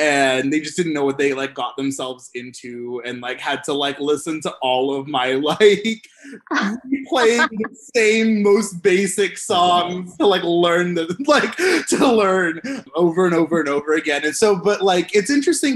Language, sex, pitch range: English, male, 140-195 Hz